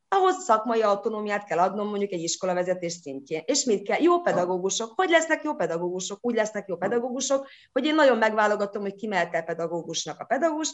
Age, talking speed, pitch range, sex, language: 30-49, 175 wpm, 185-270 Hz, female, Hungarian